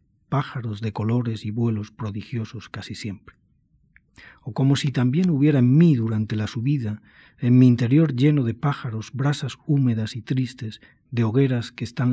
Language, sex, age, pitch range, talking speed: Spanish, male, 40-59, 110-130 Hz, 160 wpm